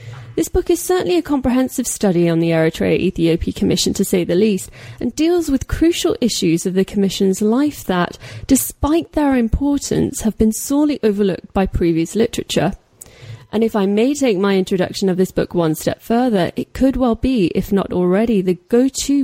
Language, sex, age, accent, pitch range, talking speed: English, female, 30-49, British, 185-240 Hz, 180 wpm